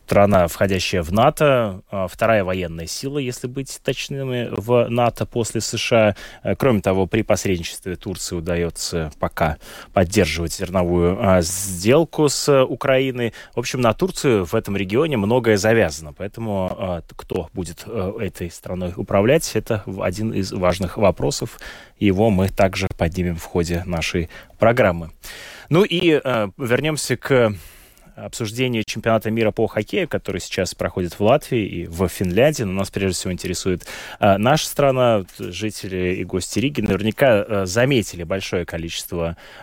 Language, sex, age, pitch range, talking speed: Russian, male, 20-39, 90-110 Hz, 130 wpm